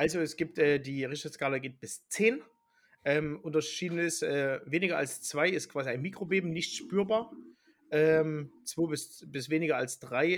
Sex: male